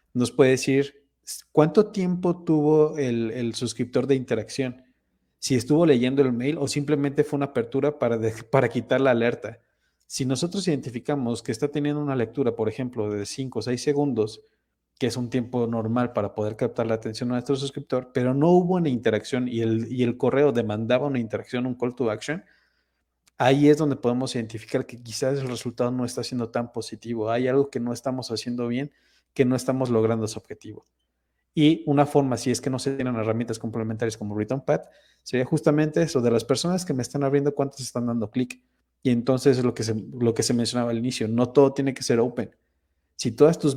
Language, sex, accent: Spanish, male, Mexican